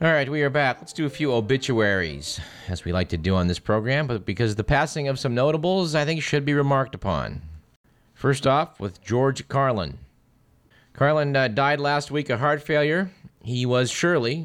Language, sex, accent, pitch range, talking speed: English, male, American, 105-145 Hz, 195 wpm